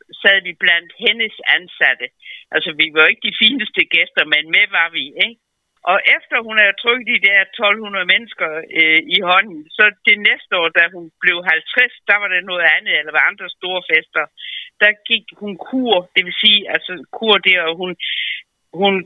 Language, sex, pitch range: Danish, female, 175-245 Hz